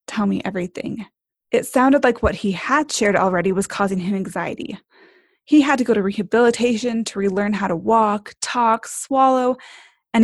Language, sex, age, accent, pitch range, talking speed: English, female, 20-39, American, 205-260 Hz, 170 wpm